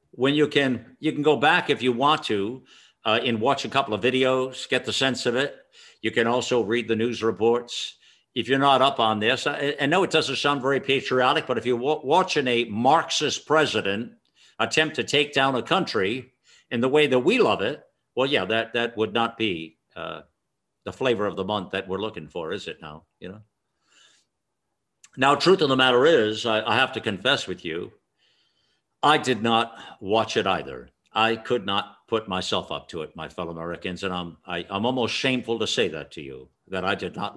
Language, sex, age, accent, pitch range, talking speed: English, male, 60-79, American, 105-135 Hz, 210 wpm